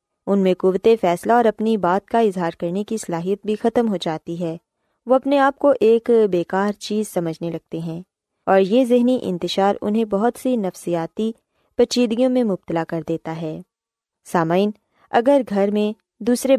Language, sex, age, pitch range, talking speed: Urdu, female, 20-39, 180-245 Hz, 165 wpm